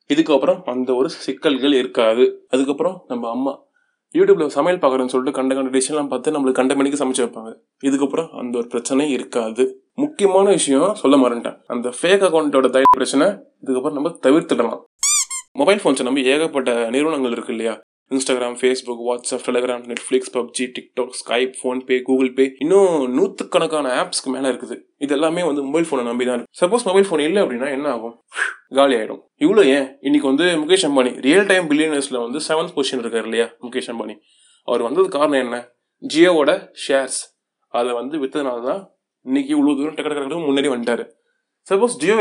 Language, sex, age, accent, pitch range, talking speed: Tamil, male, 20-39, native, 125-185 Hz, 160 wpm